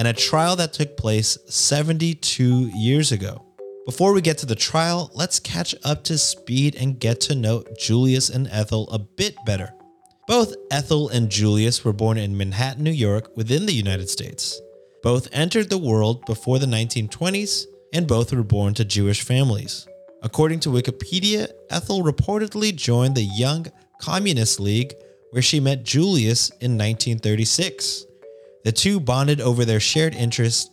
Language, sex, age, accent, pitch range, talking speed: English, male, 30-49, American, 110-155 Hz, 160 wpm